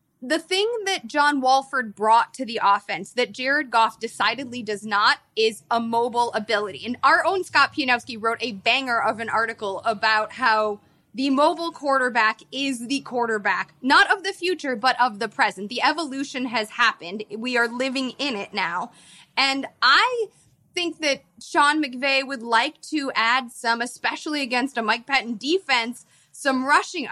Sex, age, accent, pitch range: female, 20-39, American, 235-295 Hz